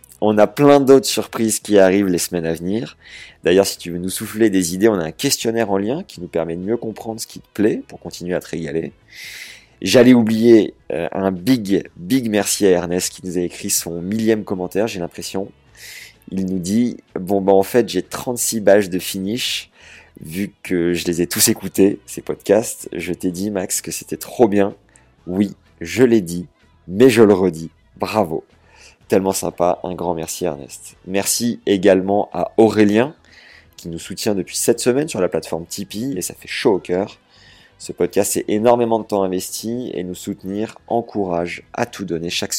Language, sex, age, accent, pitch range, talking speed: French, male, 30-49, French, 90-110 Hz, 195 wpm